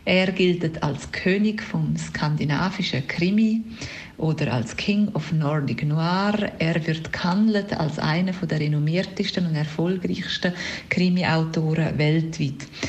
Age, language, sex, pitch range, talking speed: 40-59, German, female, 160-210 Hz, 115 wpm